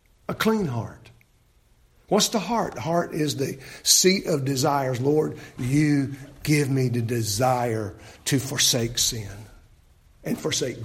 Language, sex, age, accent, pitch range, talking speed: English, male, 50-69, American, 150-230 Hz, 125 wpm